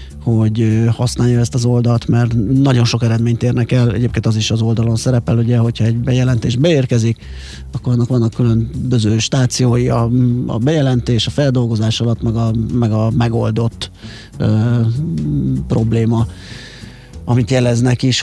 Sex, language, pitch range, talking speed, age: male, Hungarian, 115-135 Hz, 140 wpm, 30-49